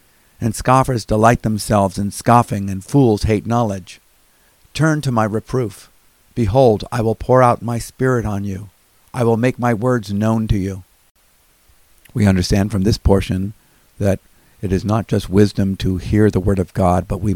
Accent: American